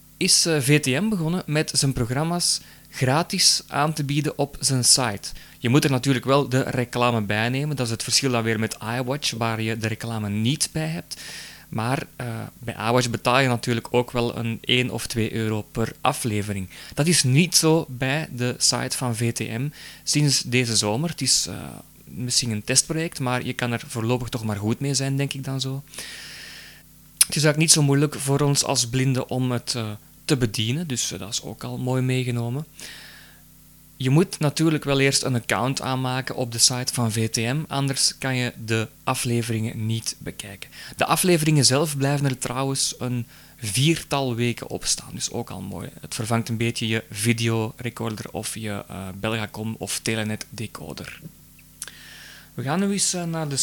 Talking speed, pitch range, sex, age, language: 180 wpm, 115-140 Hz, male, 20-39, Dutch